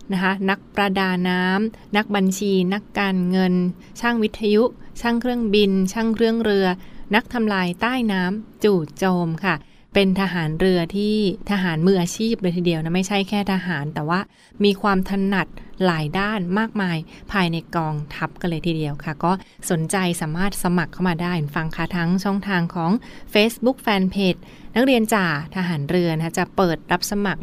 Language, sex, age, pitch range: Thai, female, 20-39, 175-205 Hz